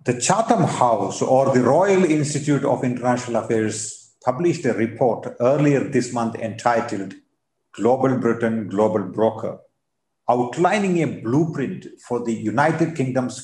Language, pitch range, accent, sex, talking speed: English, 110-145 Hz, Indian, male, 125 wpm